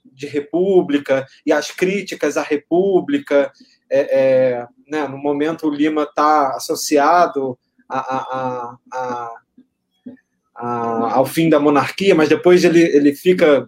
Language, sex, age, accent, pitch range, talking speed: Portuguese, male, 20-39, Brazilian, 140-175 Hz, 125 wpm